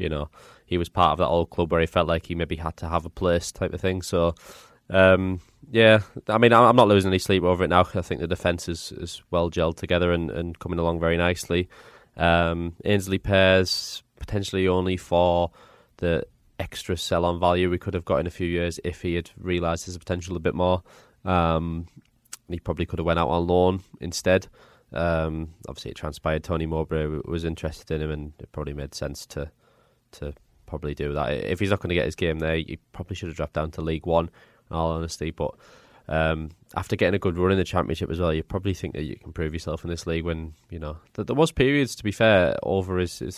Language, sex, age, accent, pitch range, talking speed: English, male, 20-39, British, 80-90 Hz, 230 wpm